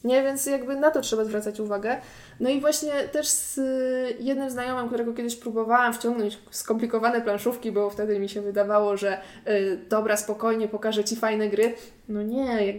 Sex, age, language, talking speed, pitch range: female, 20-39, Polish, 170 wpm, 215-280 Hz